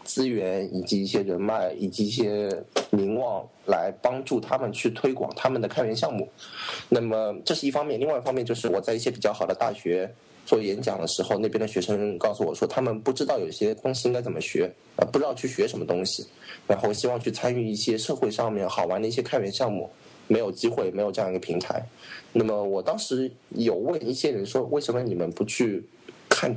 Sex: male